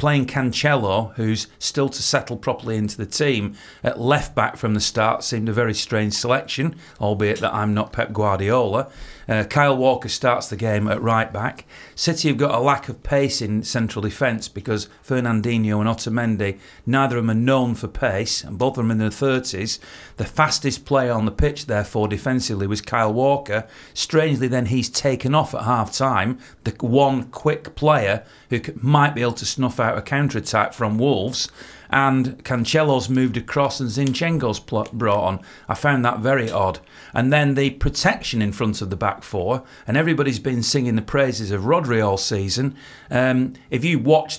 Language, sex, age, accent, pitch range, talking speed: English, male, 40-59, British, 110-135 Hz, 185 wpm